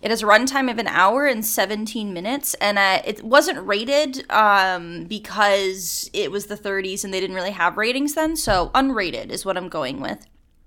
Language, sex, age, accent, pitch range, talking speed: English, female, 20-39, American, 185-245 Hz, 195 wpm